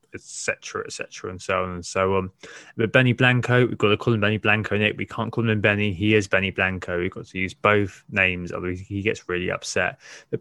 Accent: British